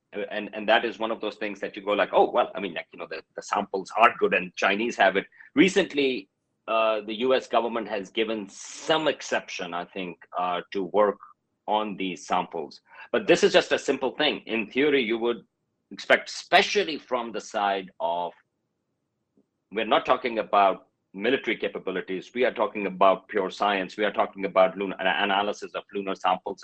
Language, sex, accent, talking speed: English, male, Indian, 185 wpm